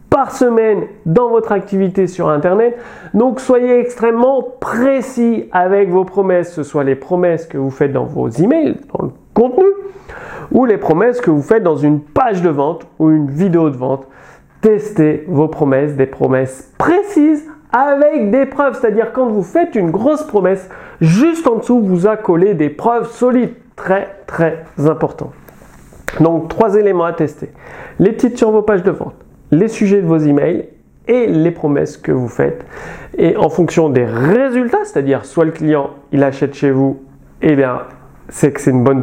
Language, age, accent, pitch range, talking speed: French, 40-59, French, 145-210 Hz, 185 wpm